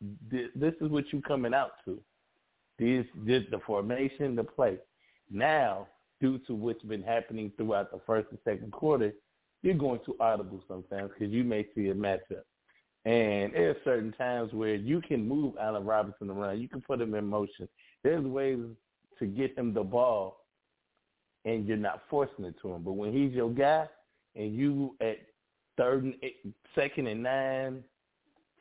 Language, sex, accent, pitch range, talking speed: English, male, American, 115-145 Hz, 170 wpm